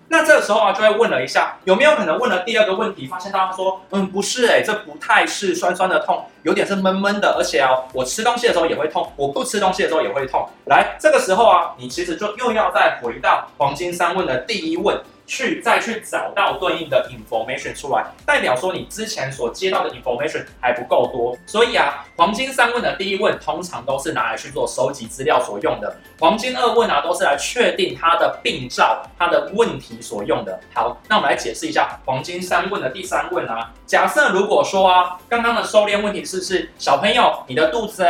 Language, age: Chinese, 20-39